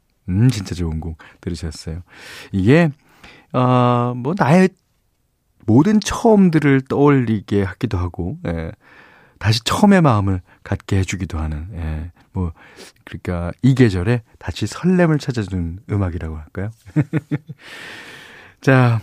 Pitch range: 95-145 Hz